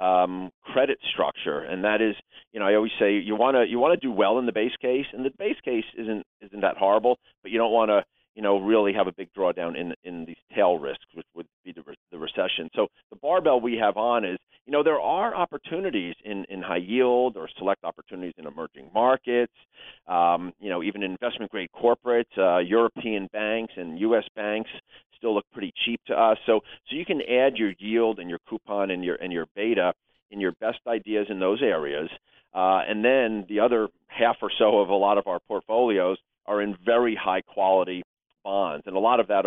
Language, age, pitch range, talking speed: English, 40-59, 95-115 Hz, 220 wpm